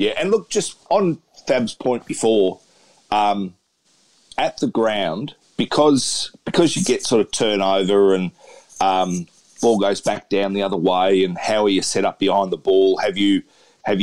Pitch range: 95-105 Hz